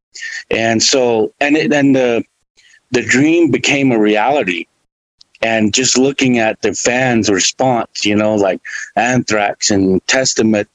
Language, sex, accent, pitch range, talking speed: English, male, American, 105-125 Hz, 135 wpm